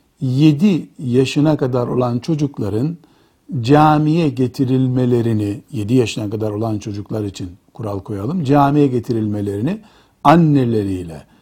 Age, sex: 60-79, male